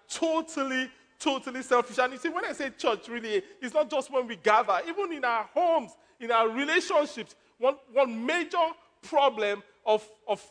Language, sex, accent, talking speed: English, male, Nigerian, 170 wpm